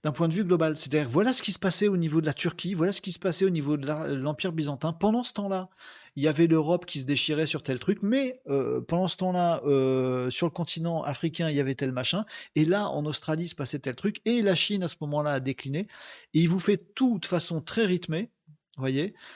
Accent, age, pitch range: French, 40-59, 135-180 Hz